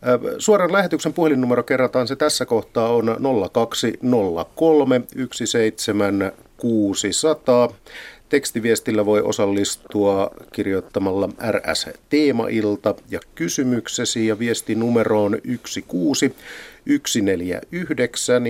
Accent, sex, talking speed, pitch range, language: native, male, 65 wpm, 100-130 Hz, Finnish